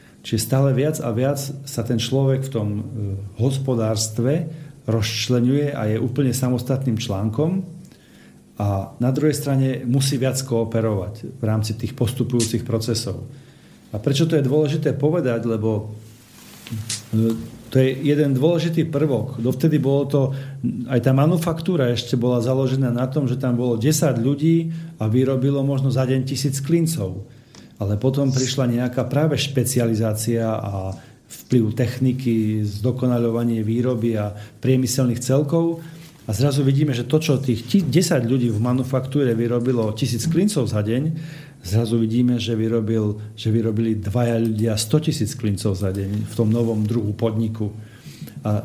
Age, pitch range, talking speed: 40-59, 115-140 Hz, 140 wpm